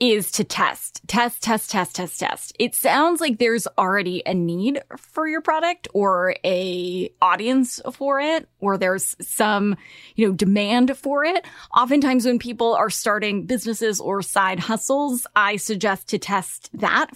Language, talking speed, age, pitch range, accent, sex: English, 155 wpm, 20-39, 195-255 Hz, American, female